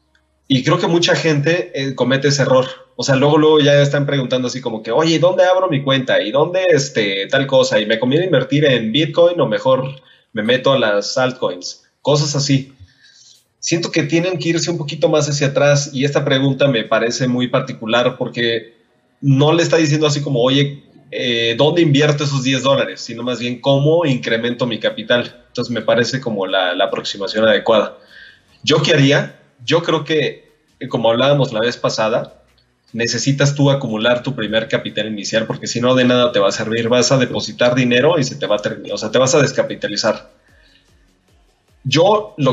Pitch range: 120-145 Hz